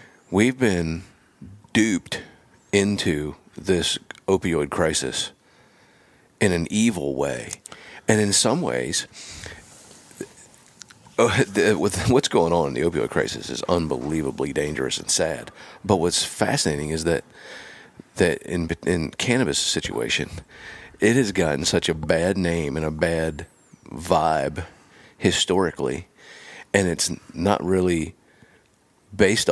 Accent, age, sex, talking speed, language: American, 40-59, male, 110 wpm, English